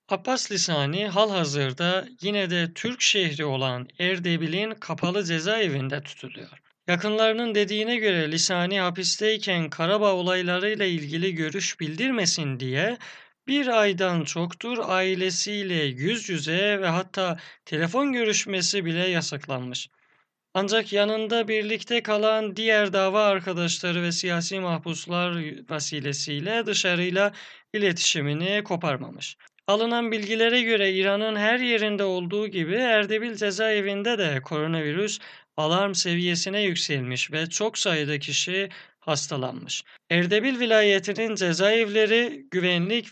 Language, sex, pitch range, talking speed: Persian, male, 170-215 Hz, 100 wpm